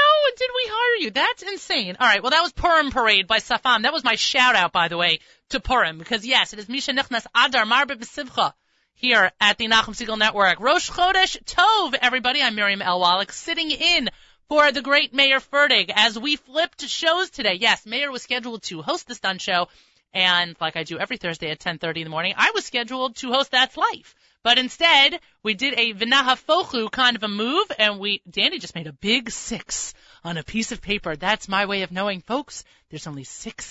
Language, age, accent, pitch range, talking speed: English, 30-49, American, 195-275 Hz, 205 wpm